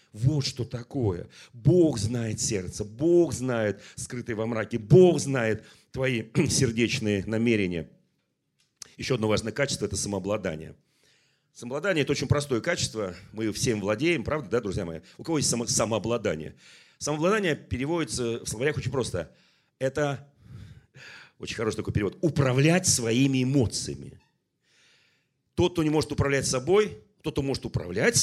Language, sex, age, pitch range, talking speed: Russian, male, 40-59, 115-155 Hz, 135 wpm